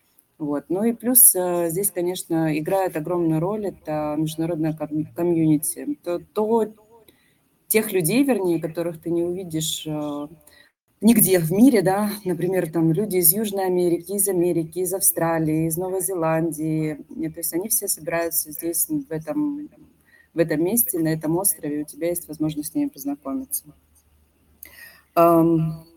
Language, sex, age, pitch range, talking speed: Russian, female, 20-39, 165-205 Hz, 145 wpm